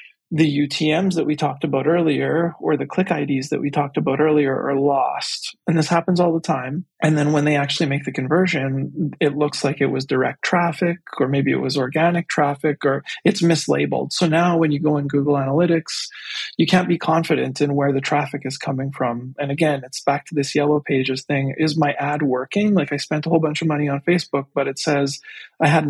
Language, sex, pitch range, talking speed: English, male, 140-165 Hz, 220 wpm